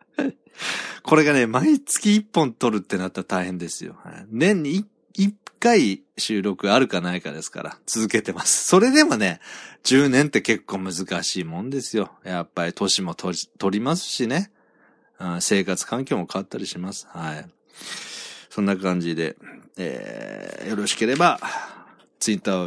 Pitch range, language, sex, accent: 90-140 Hz, Japanese, male, native